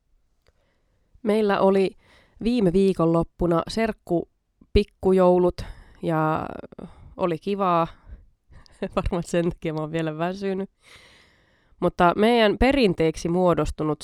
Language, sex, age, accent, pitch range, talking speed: Finnish, female, 20-39, native, 155-195 Hz, 90 wpm